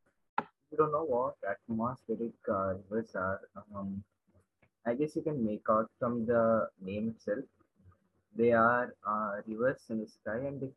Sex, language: male, English